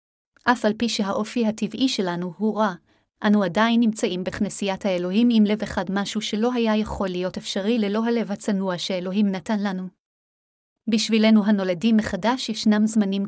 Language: Hebrew